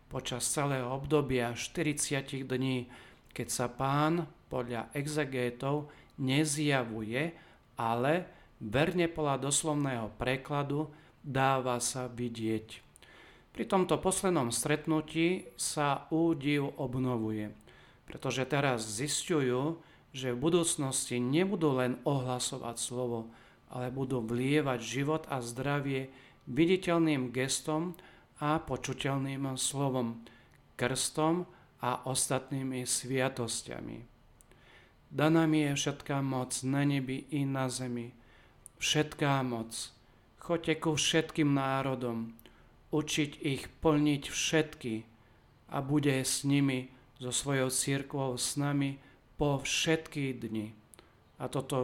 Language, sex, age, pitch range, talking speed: Slovak, male, 40-59, 125-150 Hz, 100 wpm